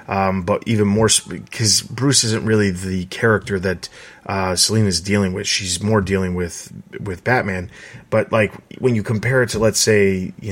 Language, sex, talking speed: English, male, 185 wpm